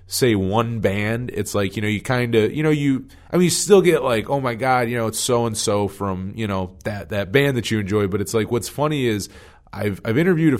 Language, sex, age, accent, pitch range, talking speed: English, male, 30-49, American, 95-125 Hz, 265 wpm